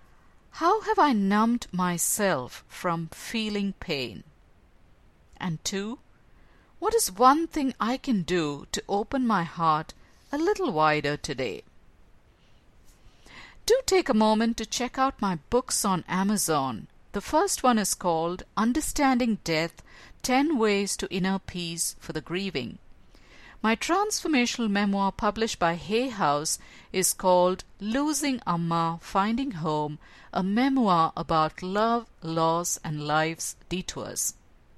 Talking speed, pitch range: 125 wpm, 165-235 Hz